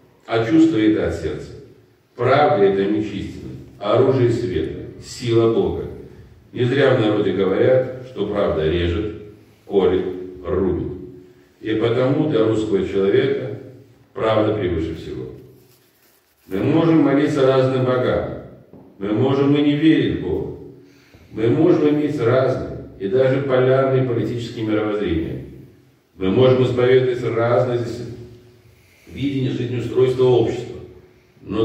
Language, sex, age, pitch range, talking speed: Russian, male, 40-59, 105-125 Hz, 110 wpm